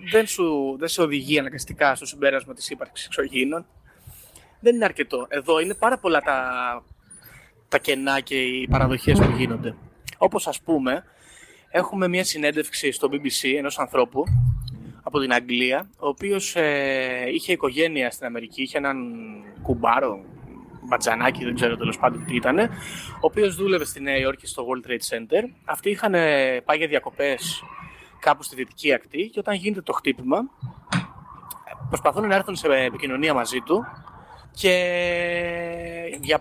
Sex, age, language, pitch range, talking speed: male, 20-39, Greek, 130-175 Hz, 145 wpm